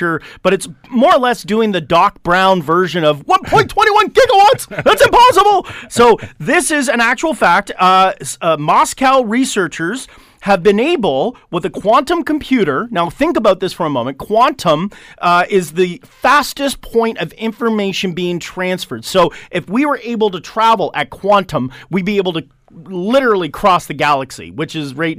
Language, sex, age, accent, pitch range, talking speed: English, male, 40-59, American, 175-235 Hz, 165 wpm